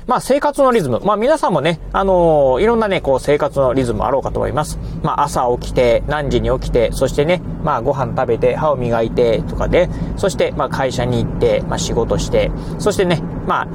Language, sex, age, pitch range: Japanese, male, 30-49, 130-215 Hz